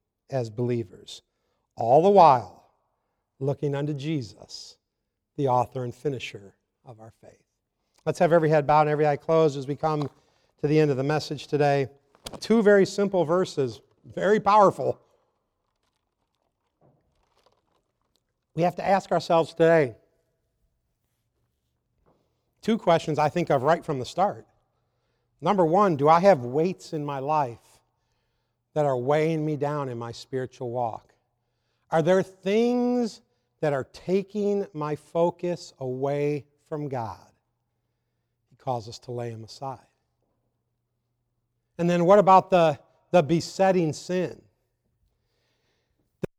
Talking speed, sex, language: 130 wpm, male, English